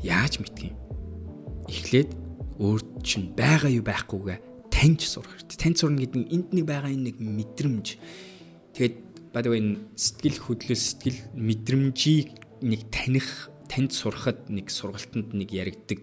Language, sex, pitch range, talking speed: English, male, 95-125 Hz, 125 wpm